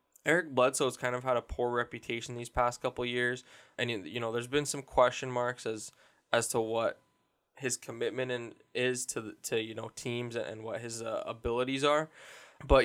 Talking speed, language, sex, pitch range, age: 190 wpm, English, male, 110-130 Hz, 10-29